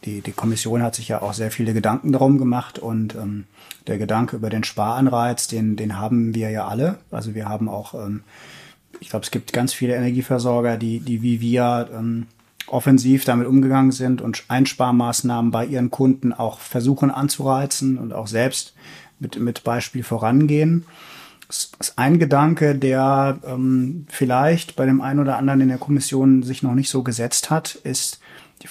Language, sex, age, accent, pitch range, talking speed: German, male, 30-49, German, 115-140 Hz, 175 wpm